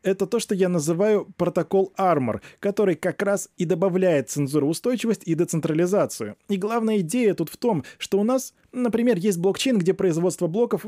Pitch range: 160-210 Hz